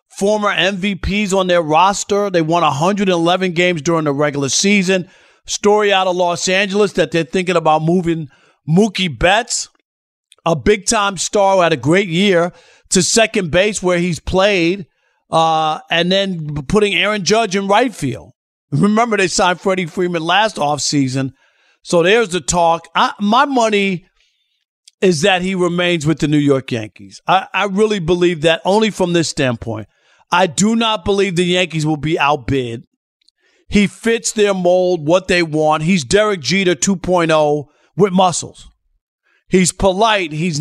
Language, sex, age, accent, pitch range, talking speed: English, male, 50-69, American, 165-205 Hz, 155 wpm